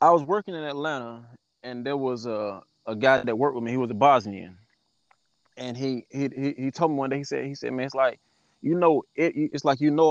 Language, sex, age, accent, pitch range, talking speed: English, male, 20-39, American, 120-145 Hz, 245 wpm